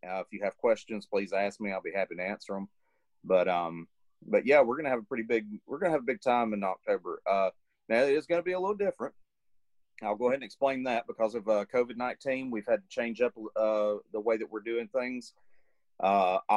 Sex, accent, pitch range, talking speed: male, American, 105-125 Hz, 245 wpm